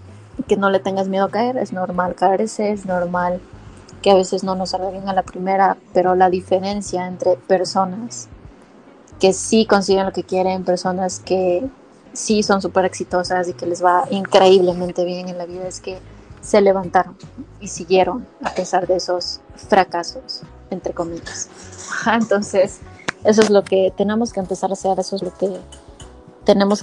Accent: Mexican